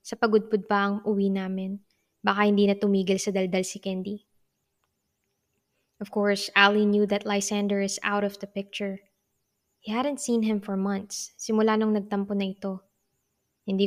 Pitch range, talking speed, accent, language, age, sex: 200-220 Hz, 160 wpm, Filipino, English, 20-39, female